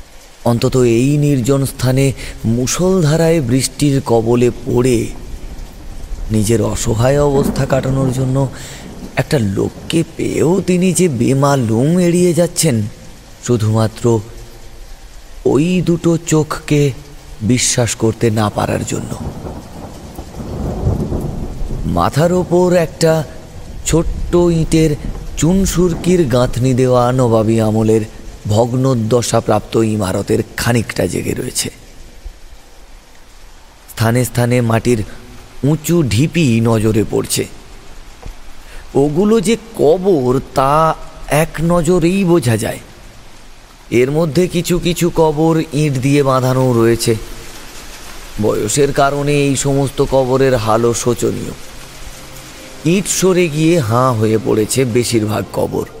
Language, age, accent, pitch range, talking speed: Bengali, 30-49, native, 110-155 Hz, 80 wpm